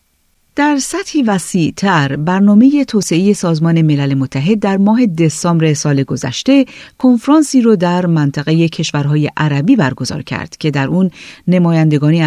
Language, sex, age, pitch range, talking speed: Persian, female, 40-59, 145-205 Hz, 125 wpm